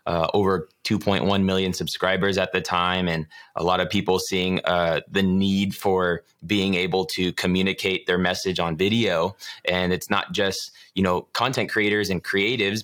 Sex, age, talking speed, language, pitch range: male, 20-39, 170 wpm, English, 90-100 Hz